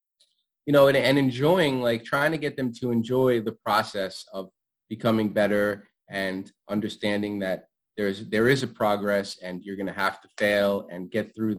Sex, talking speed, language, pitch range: male, 185 wpm, English, 100-120 Hz